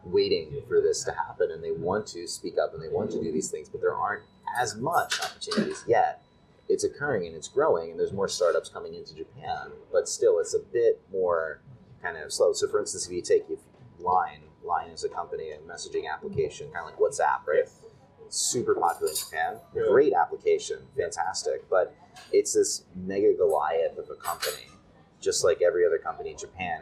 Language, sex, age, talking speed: English, male, 30-49, 195 wpm